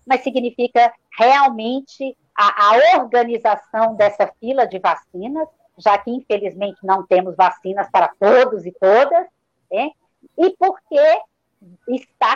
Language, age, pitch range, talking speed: Portuguese, 50-69, 225-315 Hz, 115 wpm